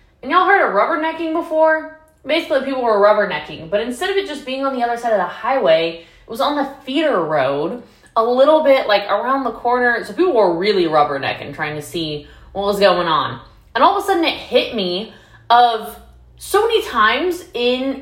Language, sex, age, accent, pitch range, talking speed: English, female, 20-39, American, 215-320 Hz, 205 wpm